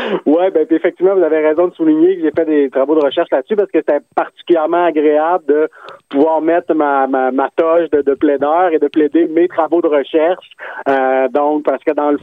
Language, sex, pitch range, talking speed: French, male, 140-170 Hz, 215 wpm